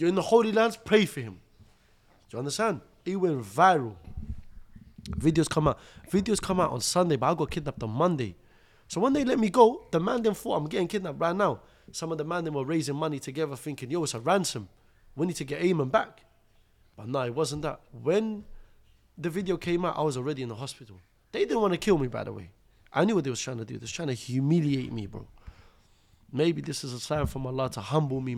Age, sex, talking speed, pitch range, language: 20-39, male, 240 wpm, 120-170 Hz, English